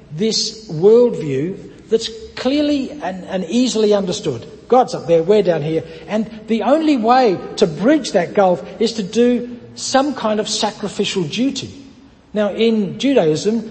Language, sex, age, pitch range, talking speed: English, male, 60-79, 165-230 Hz, 145 wpm